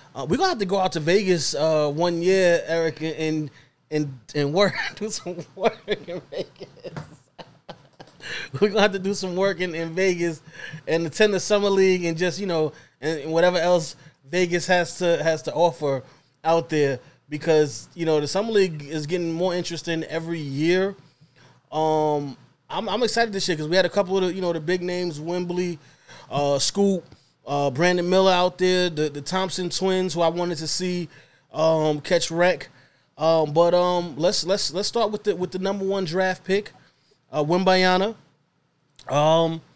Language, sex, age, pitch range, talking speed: English, male, 20-39, 155-185 Hz, 180 wpm